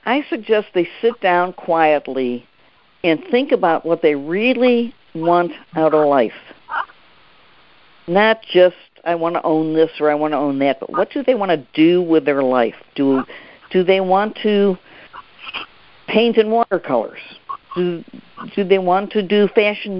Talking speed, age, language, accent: 160 wpm, 50-69, English, American